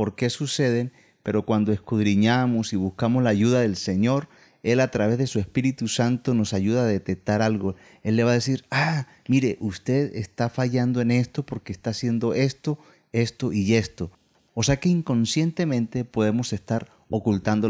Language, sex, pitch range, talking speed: Spanish, male, 105-135 Hz, 170 wpm